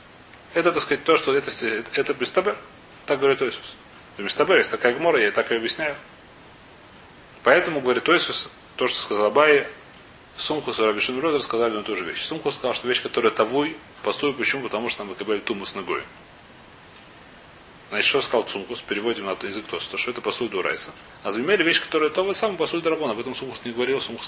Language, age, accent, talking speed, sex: Russian, 30-49, native, 200 wpm, male